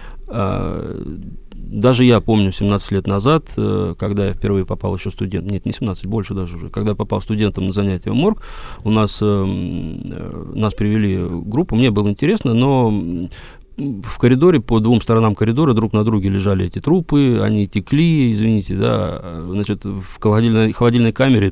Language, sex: Russian, male